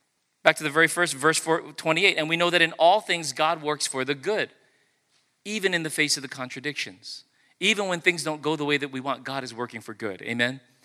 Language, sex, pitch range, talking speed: English, male, 115-155 Hz, 230 wpm